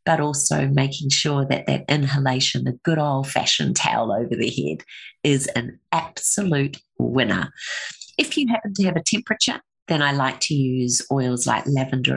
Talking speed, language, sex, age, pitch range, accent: 165 wpm, English, female, 40-59, 130-175 Hz, Australian